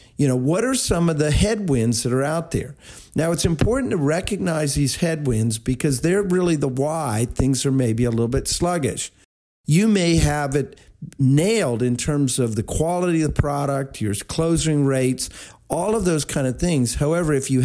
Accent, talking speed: American, 190 wpm